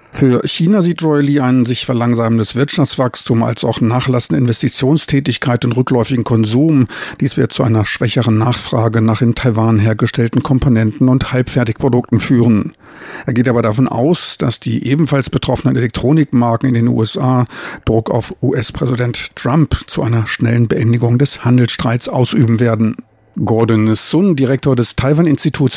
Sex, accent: male, German